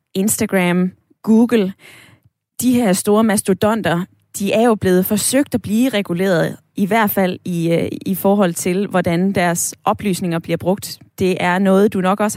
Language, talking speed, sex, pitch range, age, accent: Danish, 155 wpm, female, 185-230 Hz, 20-39, native